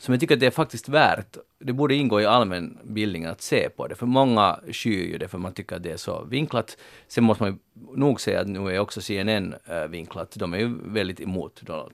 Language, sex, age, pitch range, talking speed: Swedish, male, 40-59, 95-120 Hz, 245 wpm